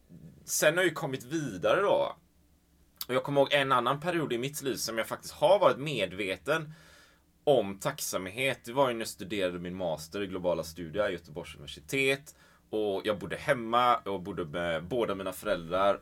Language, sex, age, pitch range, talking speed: Swedish, male, 20-39, 90-120 Hz, 175 wpm